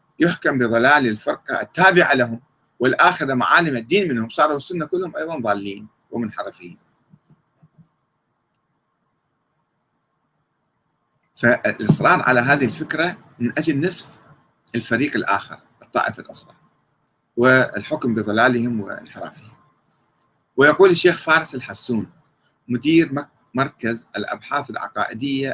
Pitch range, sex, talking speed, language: 120-160 Hz, male, 90 wpm, Arabic